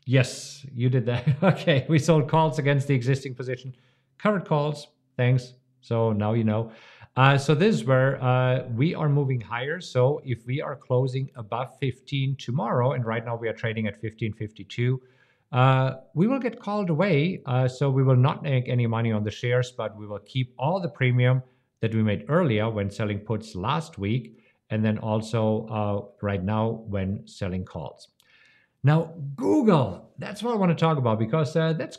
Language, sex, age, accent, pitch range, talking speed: English, male, 50-69, German, 110-150 Hz, 185 wpm